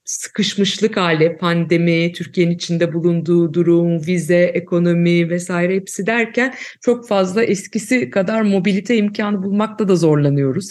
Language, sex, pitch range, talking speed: Turkish, female, 170-205 Hz, 120 wpm